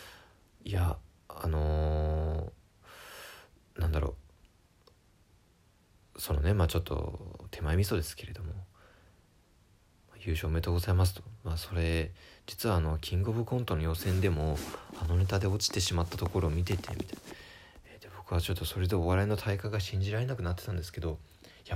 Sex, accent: male, native